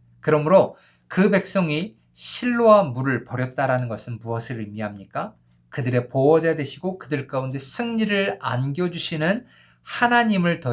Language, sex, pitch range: Korean, male, 120-185 Hz